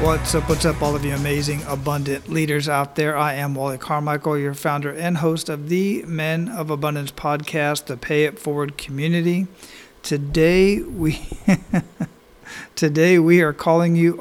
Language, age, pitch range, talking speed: English, 50-69, 150-180 Hz, 155 wpm